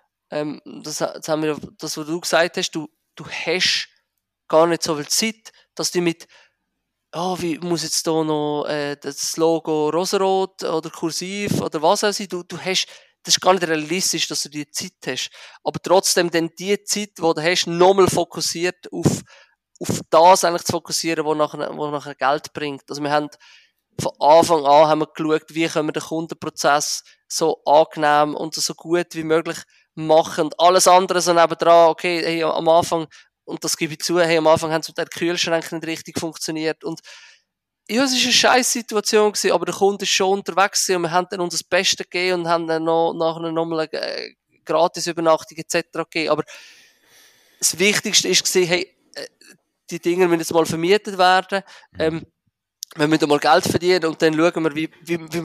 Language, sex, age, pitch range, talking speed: German, male, 20-39, 155-180 Hz, 195 wpm